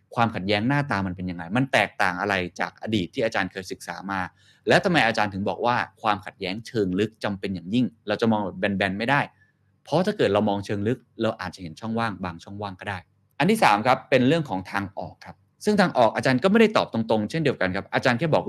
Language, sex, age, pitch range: Thai, male, 20-39, 100-130 Hz